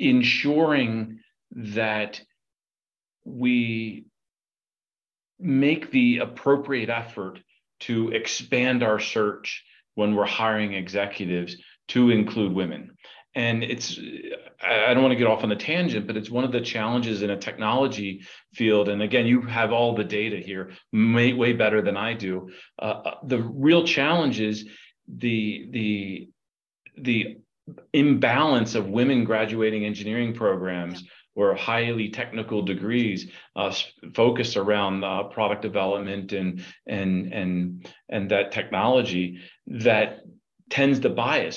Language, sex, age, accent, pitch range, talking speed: English, male, 40-59, American, 100-120 Hz, 125 wpm